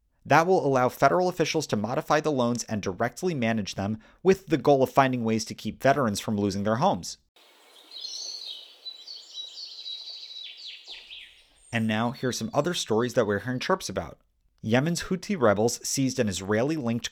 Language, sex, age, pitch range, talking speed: English, male, 30-49, 110-150 Hz, 155 wpm